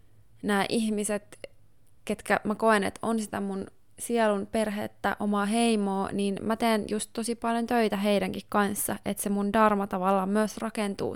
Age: 20-39